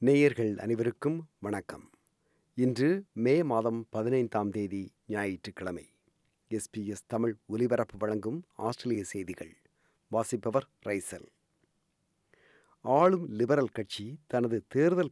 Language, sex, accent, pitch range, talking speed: Tamil, male, native, 110-150 Hz, 85 wpm